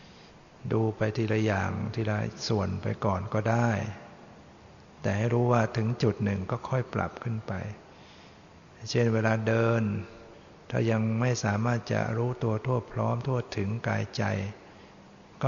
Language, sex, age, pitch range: Thai, male, 60-79, 105-120 Hz